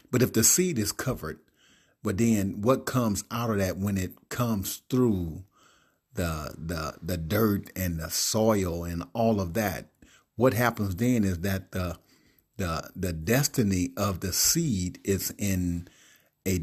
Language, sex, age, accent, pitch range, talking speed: English, male, 50-69, American, 90-115 Hz, 155 wpm